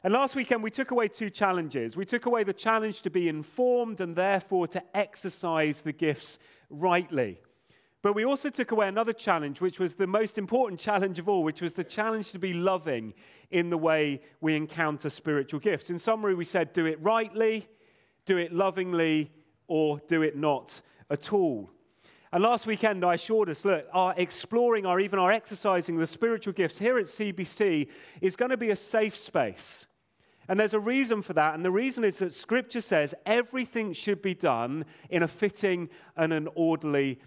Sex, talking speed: male, 190 wpm